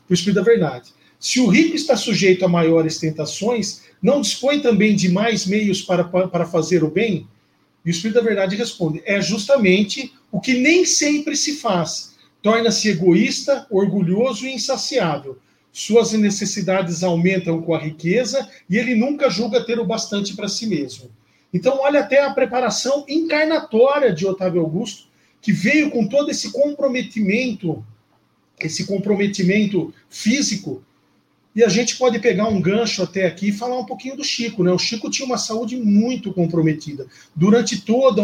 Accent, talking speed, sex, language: Brazilian, 160 wpm, male, Portuguese